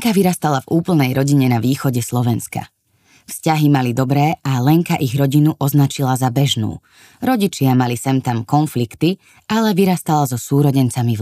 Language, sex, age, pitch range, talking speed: Slovak, female, 20-39, 125-165 Hz, 150 wpm